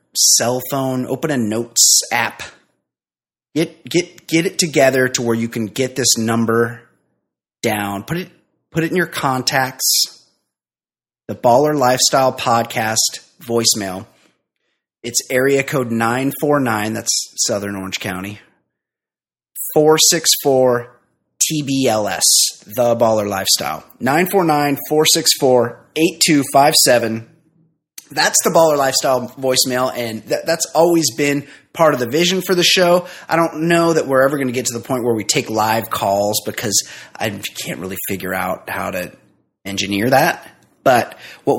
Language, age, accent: English, 30-49, American